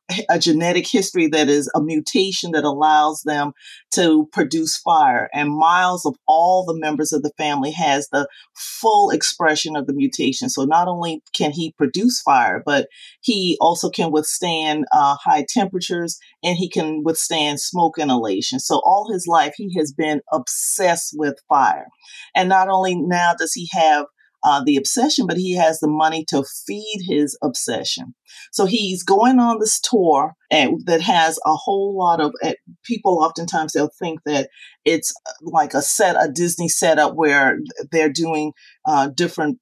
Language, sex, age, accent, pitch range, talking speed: English, female, 30-49, American, 150-195 Hz, 165 wpm